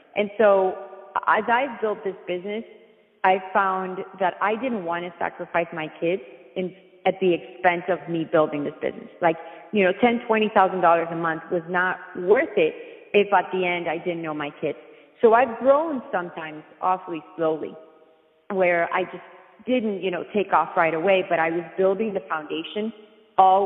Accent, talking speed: American, 175 wpm